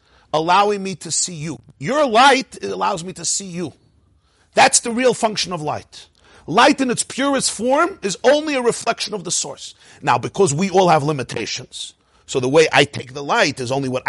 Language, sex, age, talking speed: English, male, 50-69, 195 wpm